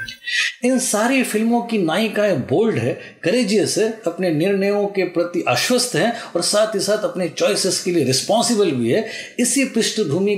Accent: native